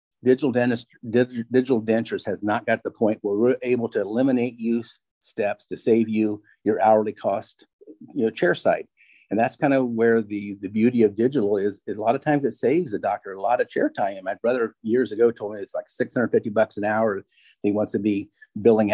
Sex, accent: male, American